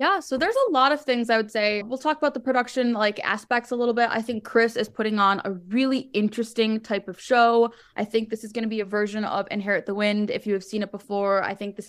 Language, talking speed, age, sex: English, 275 wpm, 20-39, female